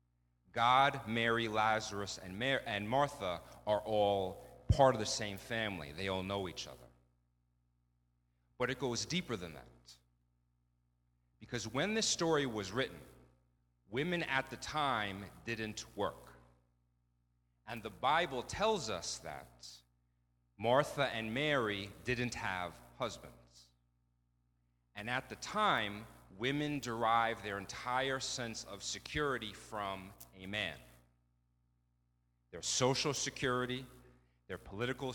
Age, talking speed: 40-59, 110 wpm